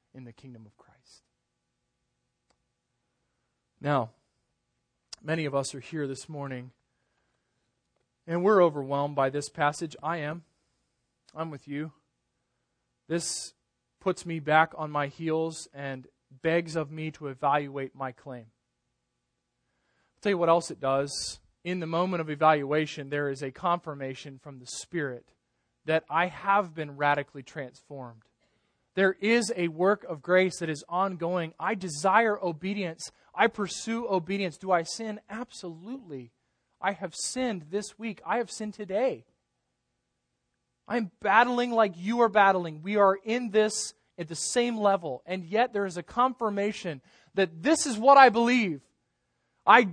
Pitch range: 140-200 Hz